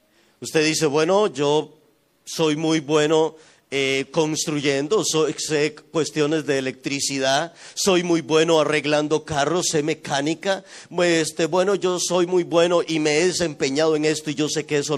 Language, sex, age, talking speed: Spanish, male, 40-59, 145 wpm